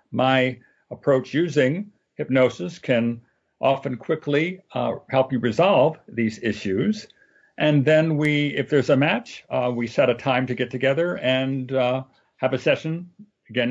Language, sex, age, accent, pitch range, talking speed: English, male, 60-79, American, 130-175 Hz, 150 wpm